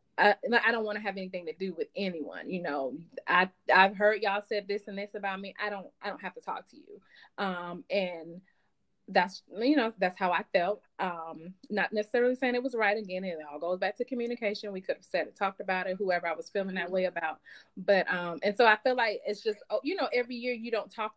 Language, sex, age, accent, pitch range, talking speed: English, female, 30-49, American, 185-235 Hz, 245 wpm